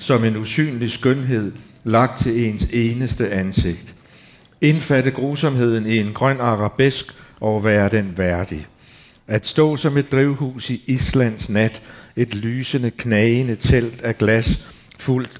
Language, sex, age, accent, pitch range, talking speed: Danish, male, 60-79, native, 105-130 Hz, 135 wpm